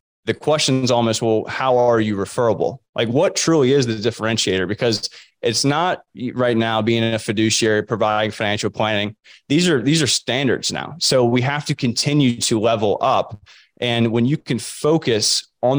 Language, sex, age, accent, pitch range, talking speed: English, male, 20-39, American, 110-130 Hz, 170 wpm